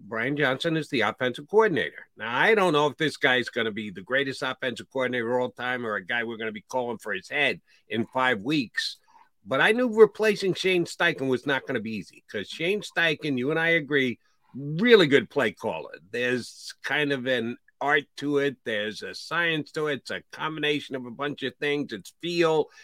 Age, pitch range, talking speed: 50-69, 120-175 Hz, 215 wpm